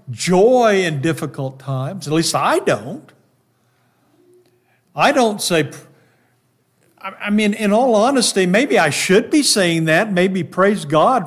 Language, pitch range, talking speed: English, 135-215 Hz, 135 wpm